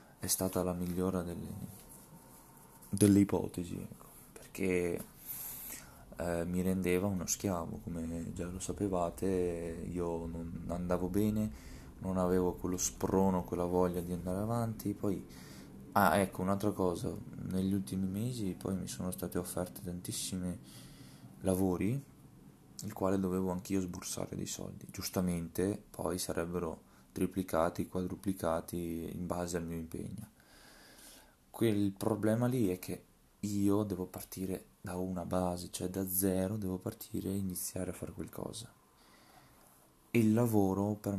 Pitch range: 90-100 Hz